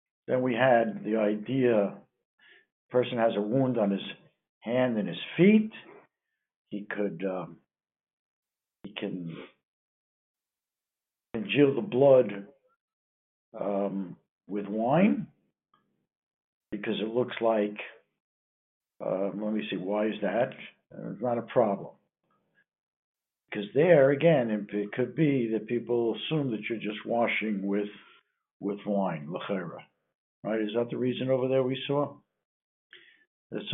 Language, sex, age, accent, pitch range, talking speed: English, male, 60-79, American, 105-145 Hz, 125 wpm